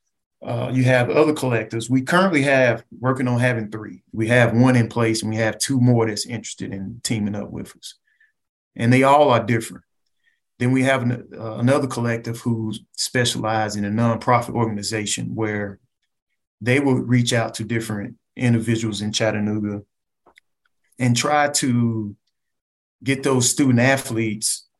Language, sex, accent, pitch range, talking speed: English, male, American, 110-125 Hz, 155 wpm